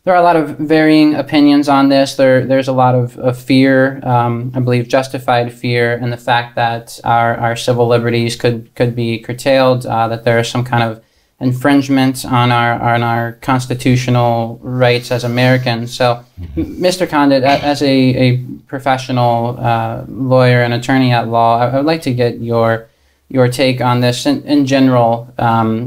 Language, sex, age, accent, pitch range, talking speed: English, male, 20-39, American, 115-130 Hz, 175 wpm